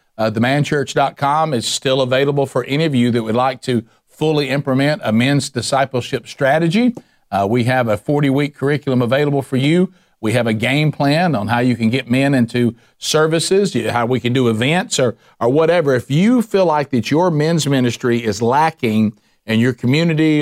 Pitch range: 120-145 Hz